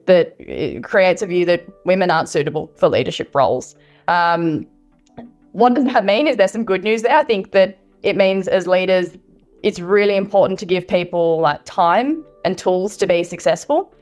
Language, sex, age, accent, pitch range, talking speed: English, female, 10-29, Australian, 175-205 Hz, 185 wpm